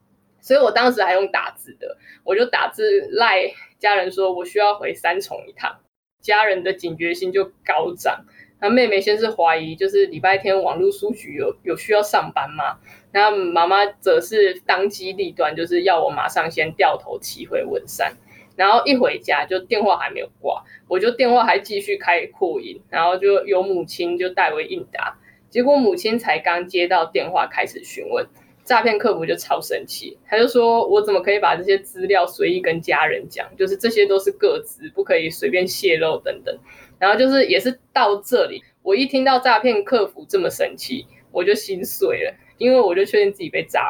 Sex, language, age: female, Chinese, 20-39